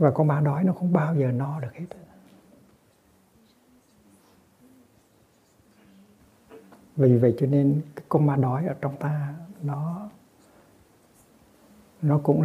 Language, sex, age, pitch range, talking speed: Vietnamese, male, 60-79, 130-155 Hz, 120 wpm